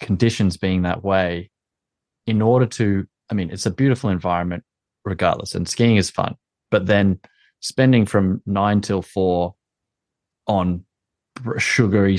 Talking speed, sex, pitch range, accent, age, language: 135 wpm, male, 90-105 Hz, Australian, 20-39, English